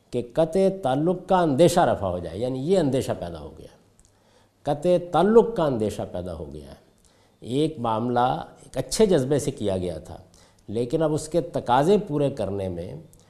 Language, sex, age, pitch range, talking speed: Urdu, male, 50-69, 105-165 Hz, 175 wpm